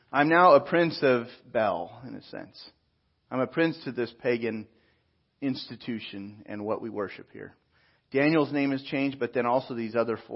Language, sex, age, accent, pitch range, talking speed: English, male, 40-59, American, 115-155 Hz, 175 wpm